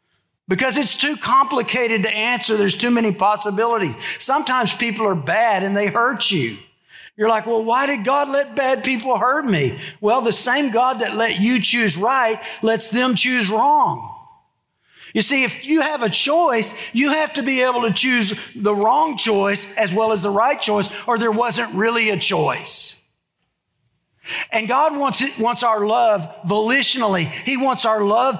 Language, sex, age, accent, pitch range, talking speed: English, male, 50-69, American, 195-250 Hz, 175 wpm